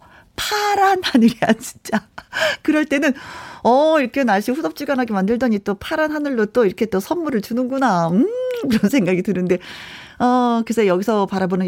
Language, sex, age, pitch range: Korean, female, 40-59, 200-300 Hz